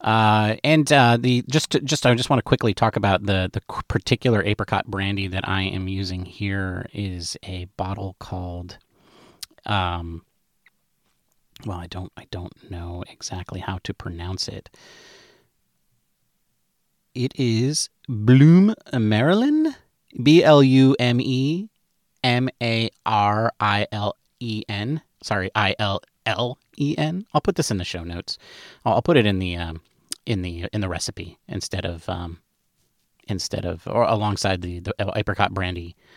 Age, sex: 30-49, male